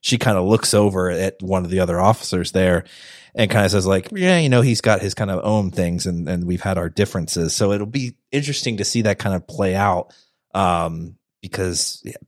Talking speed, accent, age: 230 wpm, American, 30-49